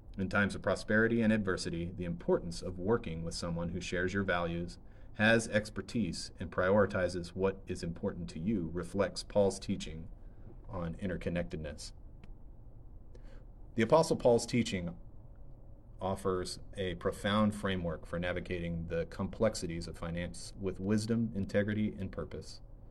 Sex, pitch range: male, 90-105 Hz